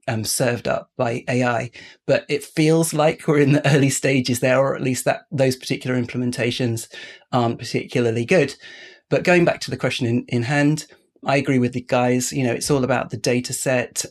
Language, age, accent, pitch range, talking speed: English, 30-49, British, 120-140 Hz, 200 wpm